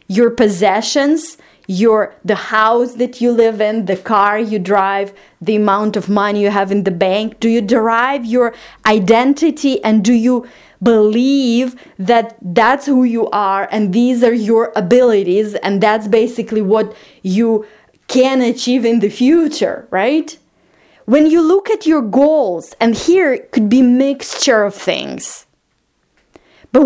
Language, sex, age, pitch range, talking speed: English, female, 20-39, 215-295 Hz, 150 wpm